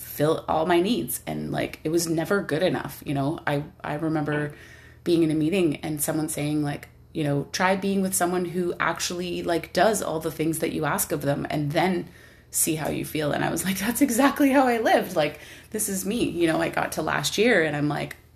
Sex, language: female, English